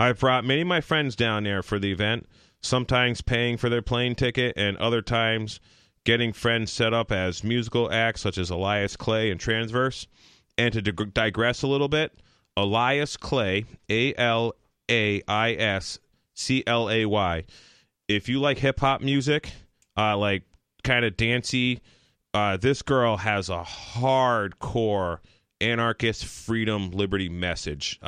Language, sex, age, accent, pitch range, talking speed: English, male, 30-49, American, 100-120 Hz, 130 wpm